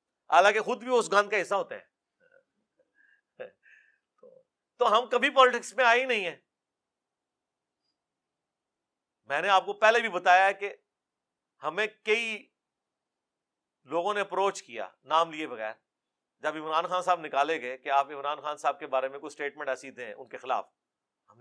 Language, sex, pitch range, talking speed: Urdu, male, 155-205 Hz, 160 wpm